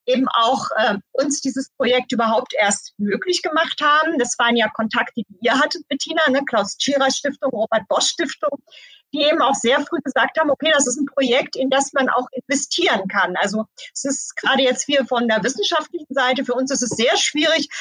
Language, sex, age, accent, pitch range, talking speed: German, female, 40-59, German, 240-300 Hz, 190 wpm